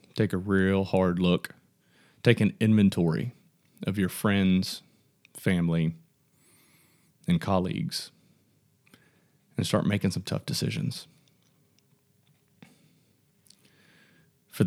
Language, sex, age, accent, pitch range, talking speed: English, male, 30-49, American, 95-125 Hz, 85 wpm